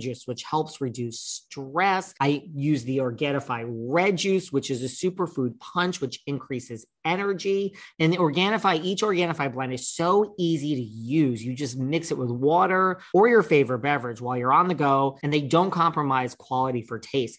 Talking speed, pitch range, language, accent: 180 wpm, 130-165 Hz, English, American